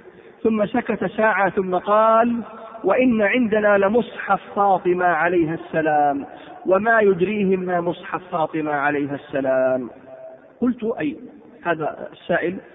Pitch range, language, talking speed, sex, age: 170-235 Hz, Arabic, 105 wpm, male, 40-59